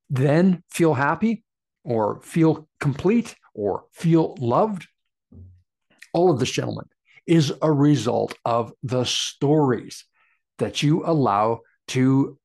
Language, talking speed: English, 110 wpm